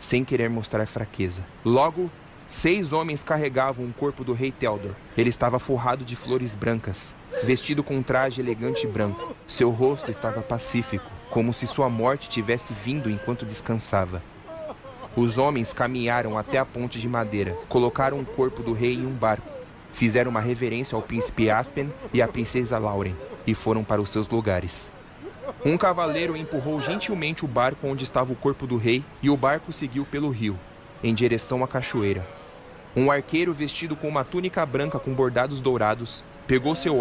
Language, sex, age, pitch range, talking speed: Portuguese, male, 20-39, 115-140 Hz, 170 wpm